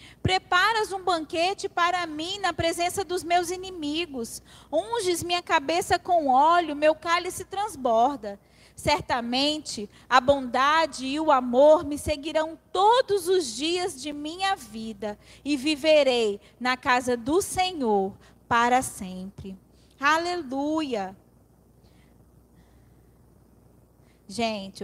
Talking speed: 100 wpm